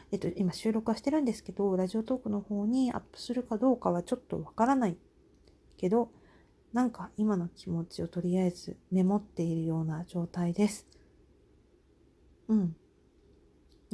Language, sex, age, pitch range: Japanese, female, 40-59, 175-215 Hz